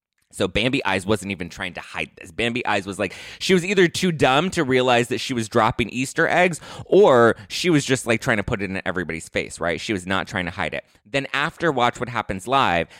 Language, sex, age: English, male, 20-39